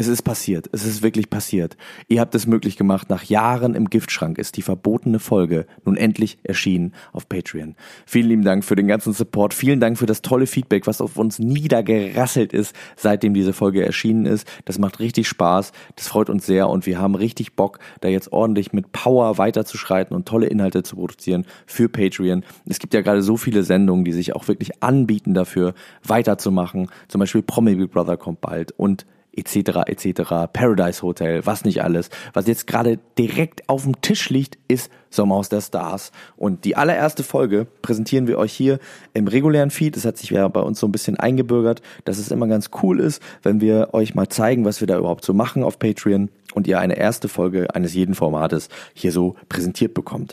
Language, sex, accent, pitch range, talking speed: German, male, German, 95-115 Hz, 200 wpm